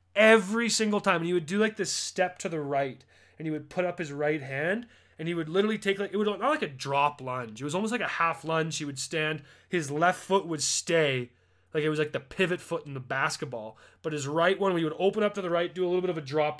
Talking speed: 280 wpm